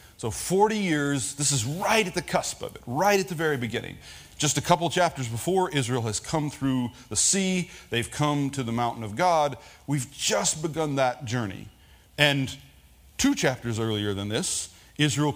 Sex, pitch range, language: male, 120-185 Hz, English